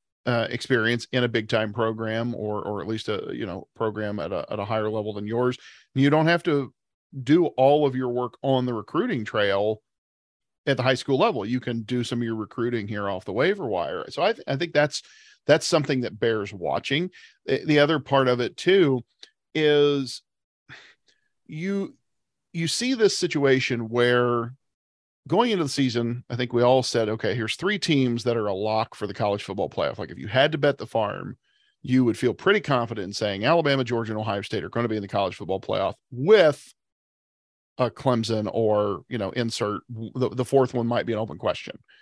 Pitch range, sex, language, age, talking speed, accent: 110-145 Hz, male, English, 40-59, 205 wpm, American